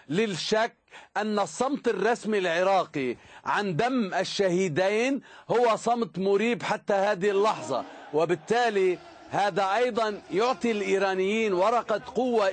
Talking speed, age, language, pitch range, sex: 100 wpm, 50-69, Arabic, 180-215 Hz, male